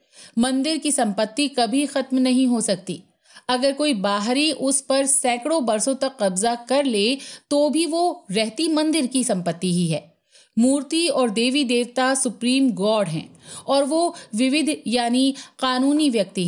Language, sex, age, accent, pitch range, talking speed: Hindi, female, 50-69, native, 220-275 Hz, 150 wpm